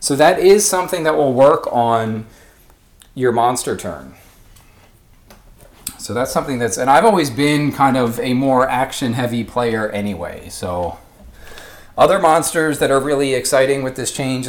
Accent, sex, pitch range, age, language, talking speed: American, male, 105-140 Hz, 30-49, English, 155 wpm